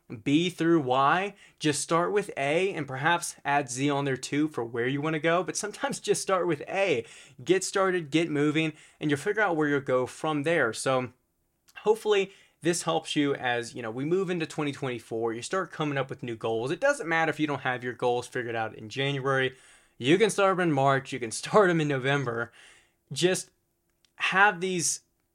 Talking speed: 205 wpm